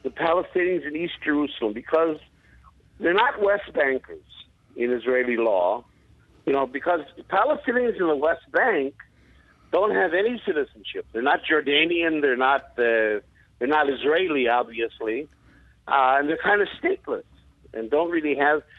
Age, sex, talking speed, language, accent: 50-69, male, 145 wpm, English, American